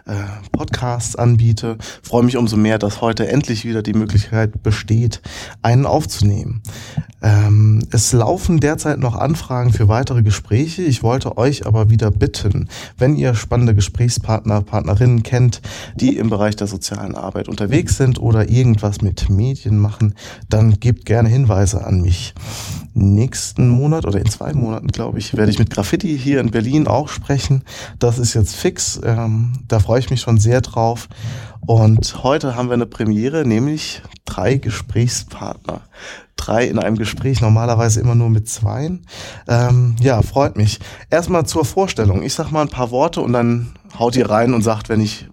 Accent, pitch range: German, 105-125 Hz